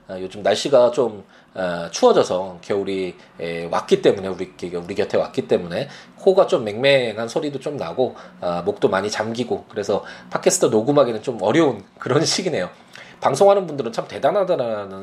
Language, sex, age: Korean, male, 20-39